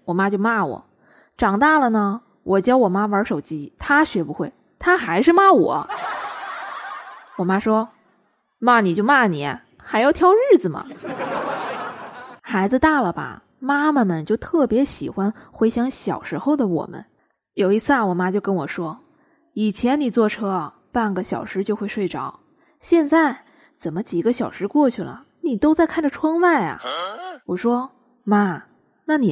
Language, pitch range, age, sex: Chinese, 195-290 Hz, 20-39, female